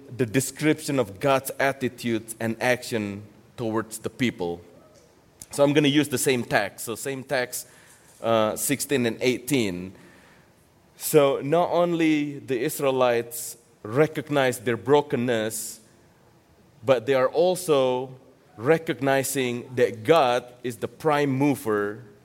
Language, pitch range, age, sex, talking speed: English, 115-145 Hz, 30-49, male, 125 wpm